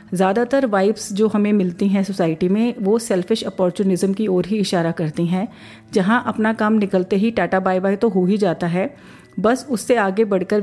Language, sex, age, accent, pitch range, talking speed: Hindi, female, 40-59, native, 185-225 Hz, 190 wpm